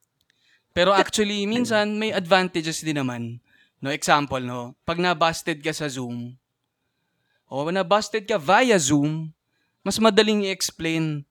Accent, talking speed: native, 120 wpm